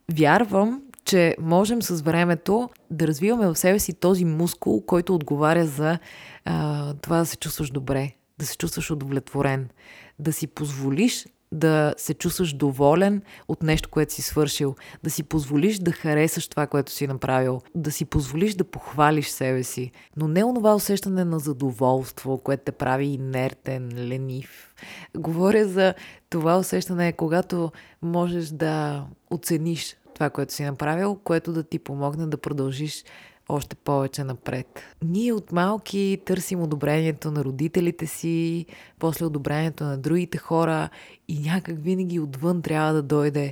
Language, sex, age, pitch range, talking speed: Bulgarian, female, 20-39, 145-170 Hz, 145 wpm